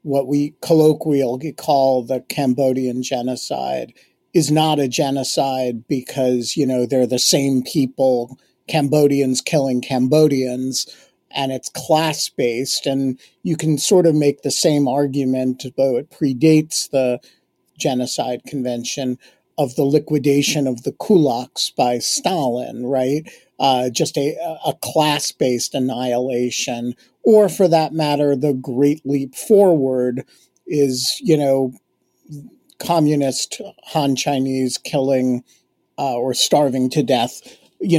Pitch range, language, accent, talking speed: 130-155 Hz, English, American, 120 wpm